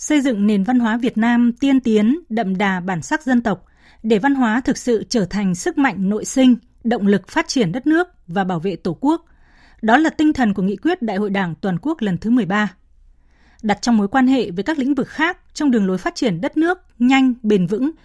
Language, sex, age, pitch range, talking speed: Vietnamese, female, 20-39, 200-260 Hz, 240 wpm